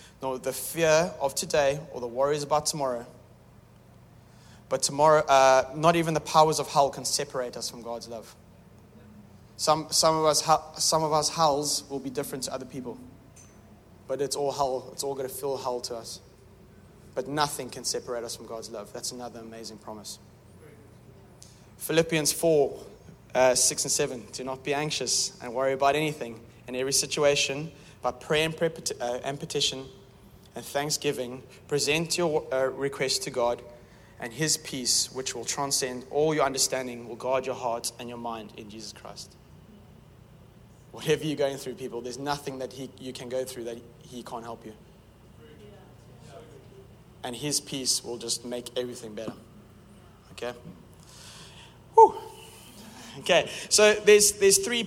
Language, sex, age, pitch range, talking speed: English, male, 20-39, 120-150 Hz, 160 wpm